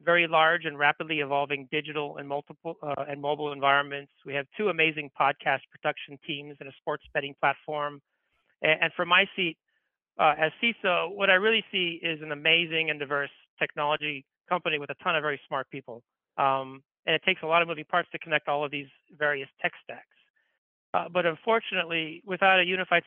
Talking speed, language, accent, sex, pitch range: 190 wpm, English, American, male, 145-170 Hz